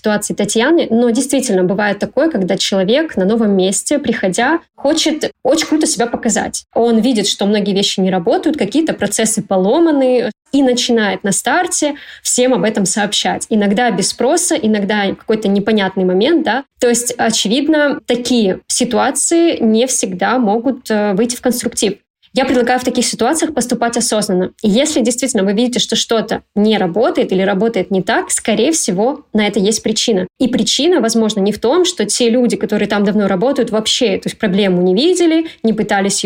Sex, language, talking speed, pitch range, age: female, Russian, 165 wpm, 205-255 Hz, 20-39